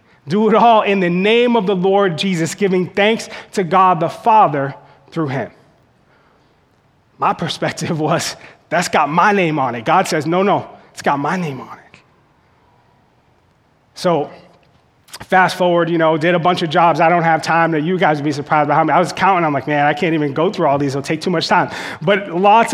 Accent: American